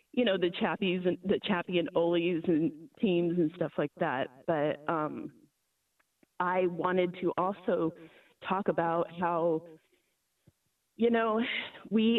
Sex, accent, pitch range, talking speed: female, American, 160-185 Hz, 135 wpm